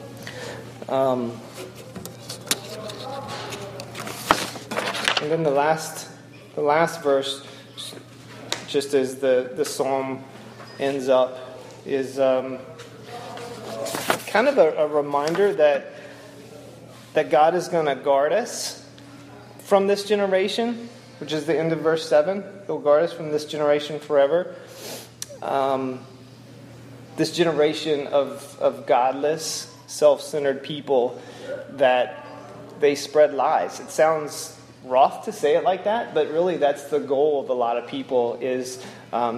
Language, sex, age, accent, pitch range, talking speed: English, male, 30-49, American, 130-155 Hz, 120 wpm